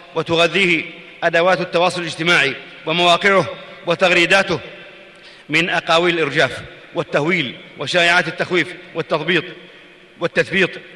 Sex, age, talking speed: male, 40-59, 70 wpm